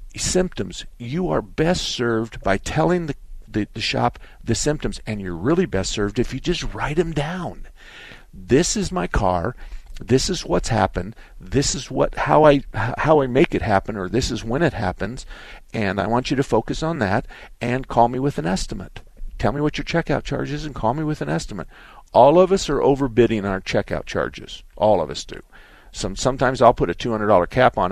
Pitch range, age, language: 100-145 Hz, 50-69, English